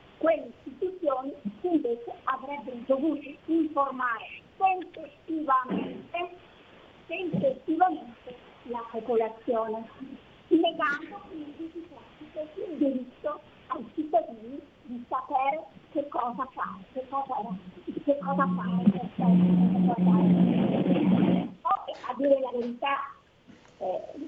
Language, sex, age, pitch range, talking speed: Italian, female, 50-69, 235-300 Hz, 80 wpm